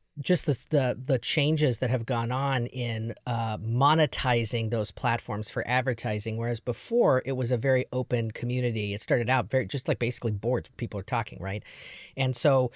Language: English